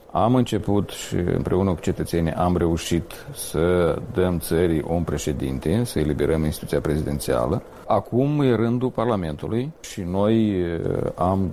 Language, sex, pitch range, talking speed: Romanian, male, 95-135 Hz, 125 wpm